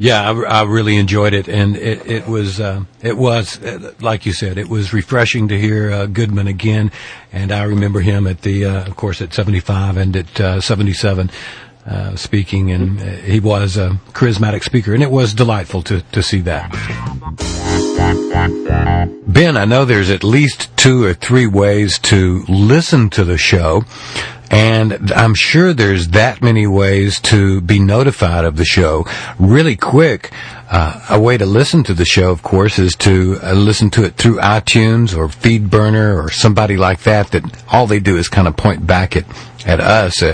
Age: 50-69